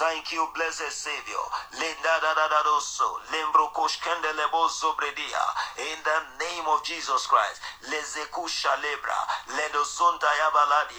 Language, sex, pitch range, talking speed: English, male, 155-170 Hz, 160 wpm